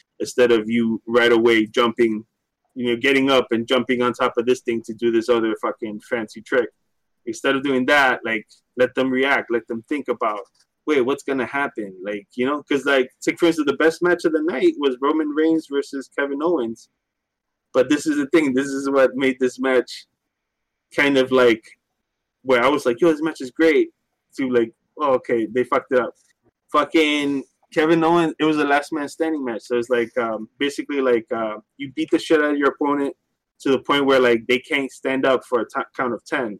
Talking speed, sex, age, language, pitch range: 215 wpm, male, 20-39, English, 125-170 Hz